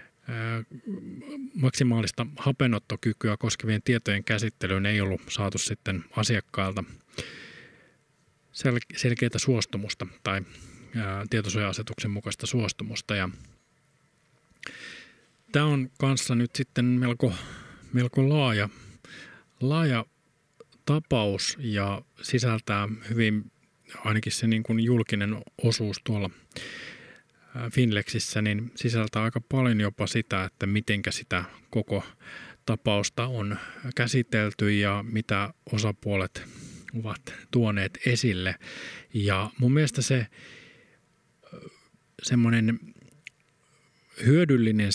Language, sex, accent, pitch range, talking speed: Finnish, male, native, 105-125 Hz, 85 wpm